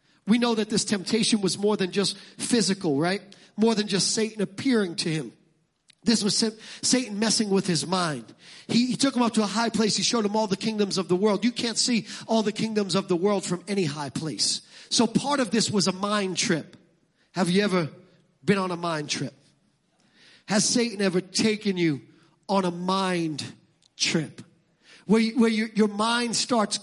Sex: male